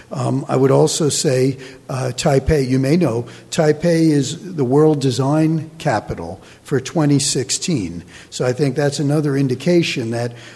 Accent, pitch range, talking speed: American, 130-155 Hz, 140 wpm